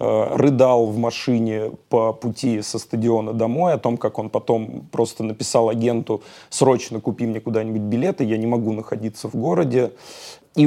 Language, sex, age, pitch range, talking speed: Russian, male, 30-49, 115-130 Hz, 155 wpm